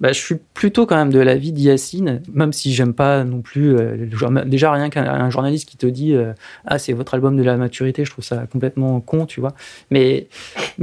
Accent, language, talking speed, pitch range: French, French, 240 wpm, 135-185 Hz